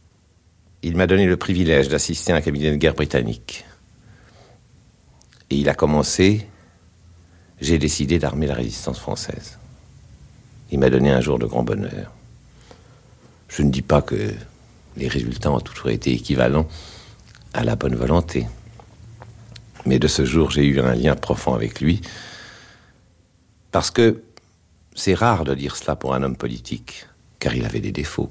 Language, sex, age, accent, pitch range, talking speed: French, male, 60-79, French, 70-95 Hz, 155 wpm